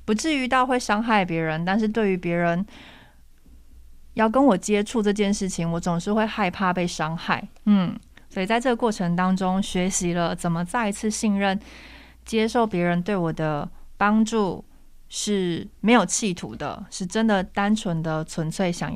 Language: Chinese